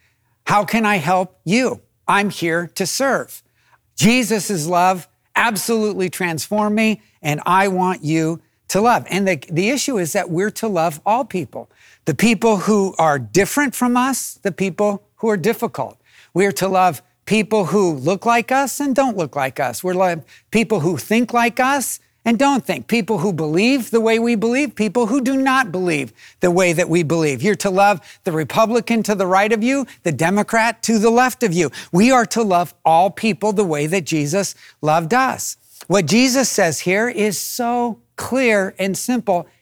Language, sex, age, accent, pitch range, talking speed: English, male, 50-69, American, 175-230 Hz, 185 wpm